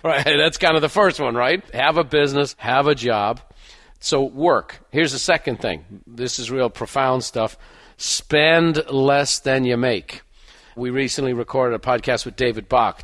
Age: 50-69